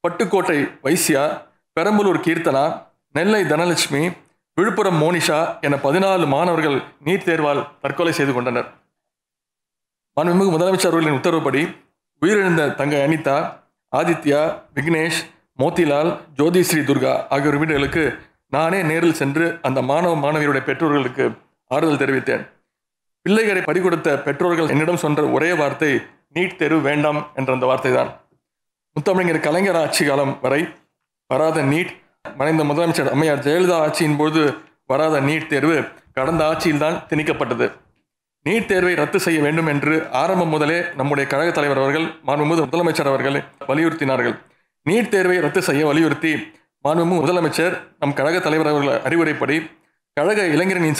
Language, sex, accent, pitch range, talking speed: Tamil, male, native, 145-170 Hz, 115 wpm